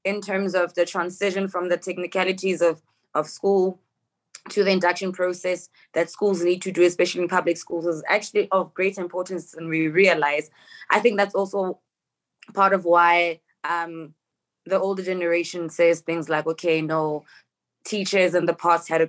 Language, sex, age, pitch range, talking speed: English, female, 20-39, 165-190 Hz, 170 wpm